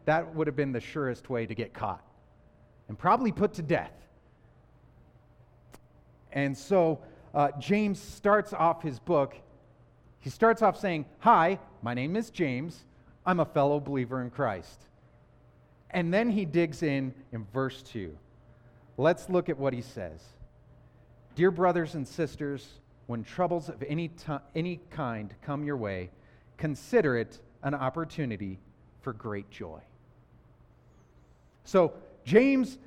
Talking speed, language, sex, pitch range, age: 135 wpm, English, male, 130-185 Hz, 40-59